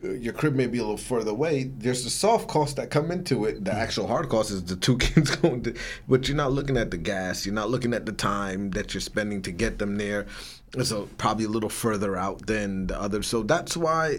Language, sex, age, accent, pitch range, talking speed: English, male, 30-49, American, 95-130 Hz, 250 wpm